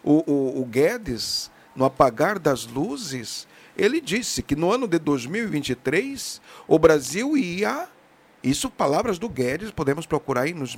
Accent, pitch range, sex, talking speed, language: Brazilian, 145-200 Hz, male, 145 wpm, Portuguese